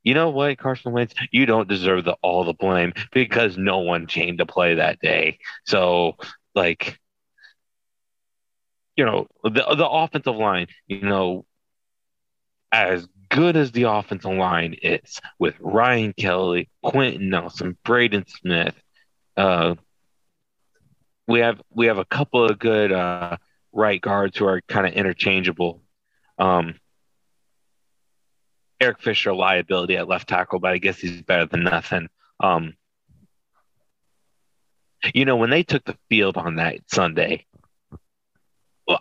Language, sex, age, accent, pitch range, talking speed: English, male, 30-49, American, 90-115 Hz, 135 wpm